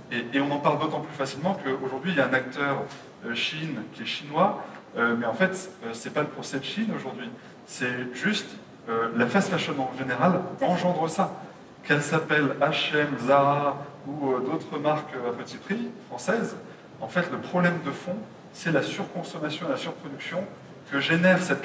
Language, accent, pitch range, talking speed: French, French, 135-175 Hz, 175 wpm